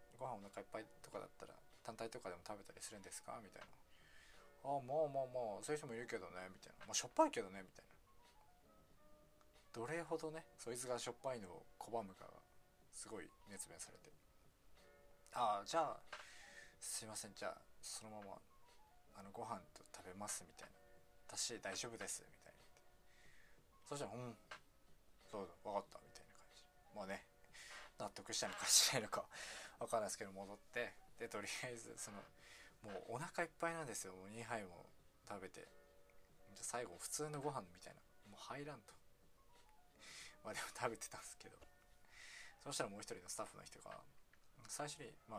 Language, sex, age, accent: Japanese, male, 20-39, native